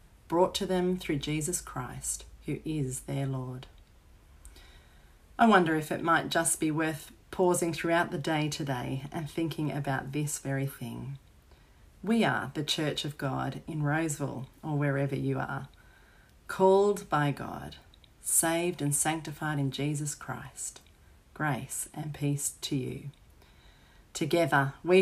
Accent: Australian